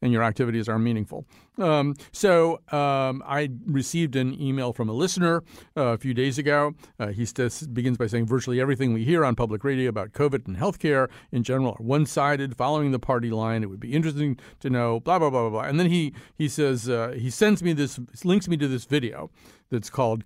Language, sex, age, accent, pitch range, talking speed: English, male, 50-69, American, 115-150 Hz, 215 wpm